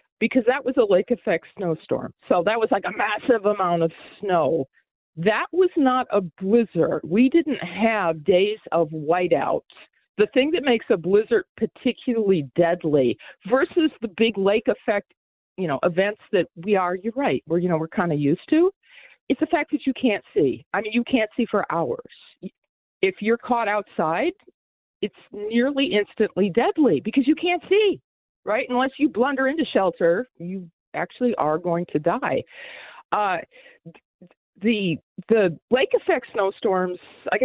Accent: American